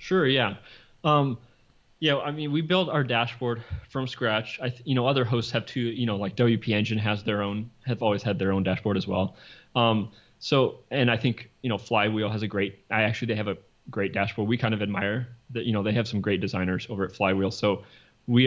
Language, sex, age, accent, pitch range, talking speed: English, male, 20-39, American, 105-120 Hz, 230 wpm